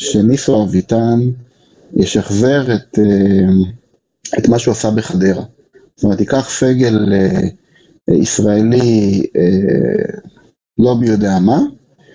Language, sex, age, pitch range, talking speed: Hebrew, male, 30-49, 105-140 Hz, 85 wpm